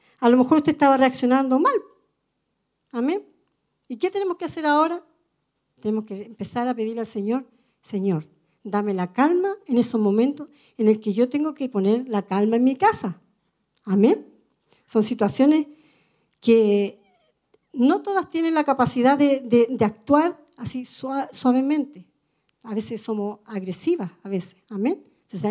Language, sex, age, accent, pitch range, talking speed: Spanish, female, 50-69, American, 215-305 Hz, 150 wpm